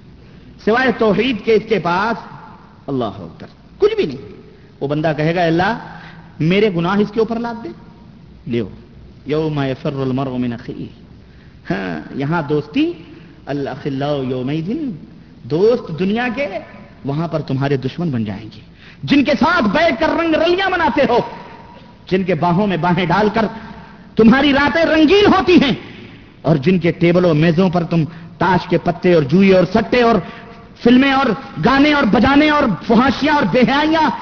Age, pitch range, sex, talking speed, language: 50-69, 165-250 Hz, male, 160 wpm, Urdu